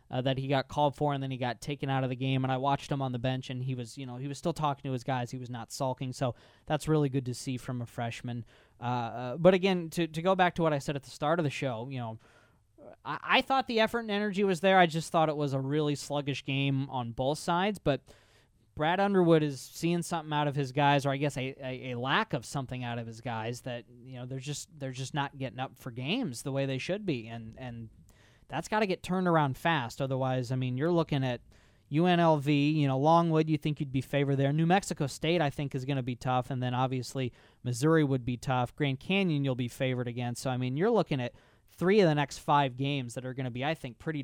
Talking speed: 265 wpm